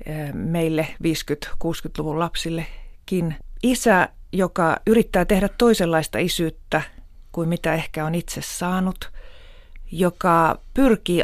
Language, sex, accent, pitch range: Finnish, female, native, 165-205 Hz